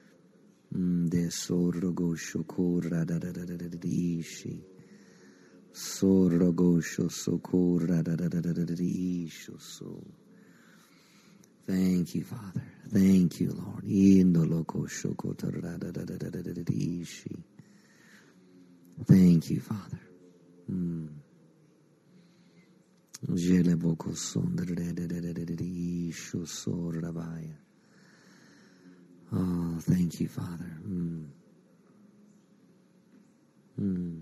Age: 50-69